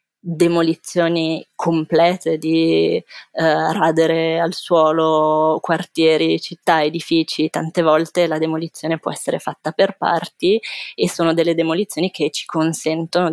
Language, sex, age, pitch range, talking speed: Italian, female, 20-39, 160-180 Hz, 115 wpm